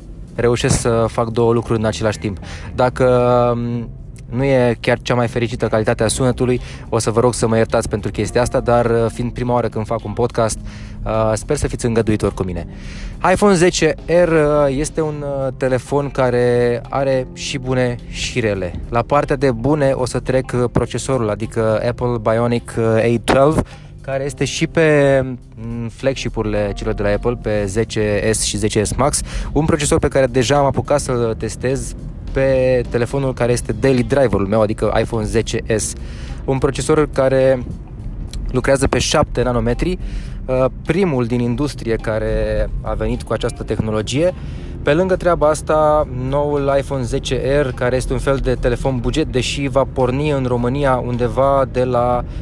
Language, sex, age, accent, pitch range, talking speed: Romanian, male, 20-39, native, 115-135 Hz, 155 wpm